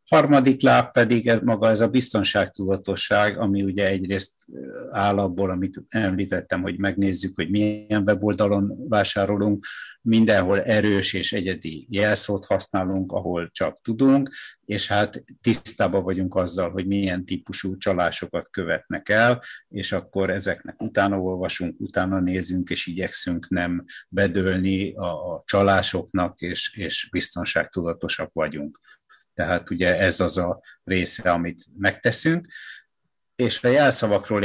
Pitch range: 95-105 Hz